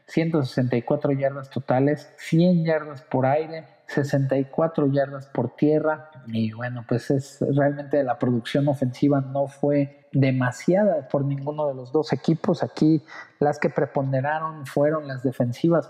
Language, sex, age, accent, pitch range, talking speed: Spanish, male, 50-69, Mexican, 130-150 Hz, 130 wpm